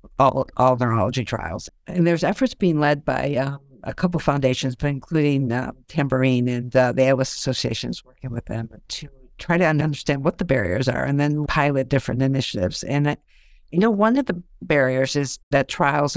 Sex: female